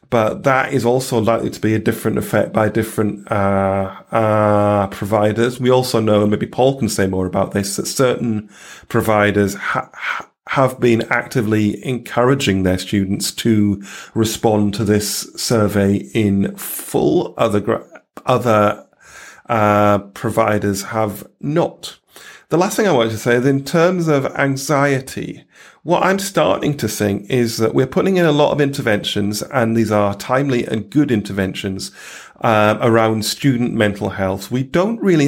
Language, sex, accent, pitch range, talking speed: English, male, British, 105-125 Hz, 155 wpm